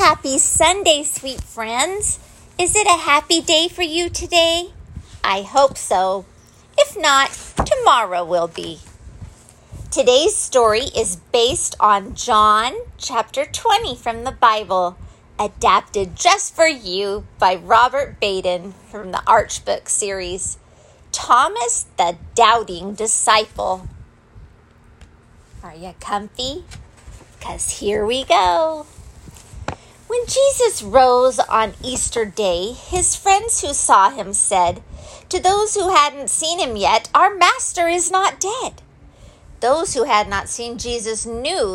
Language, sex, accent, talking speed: English, female, American, 120 wpm